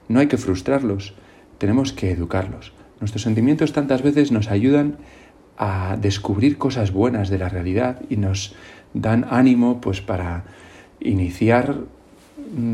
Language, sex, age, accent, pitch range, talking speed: Spanish, male, 40-59, Spanish, 95-125 Hz, 125 wpm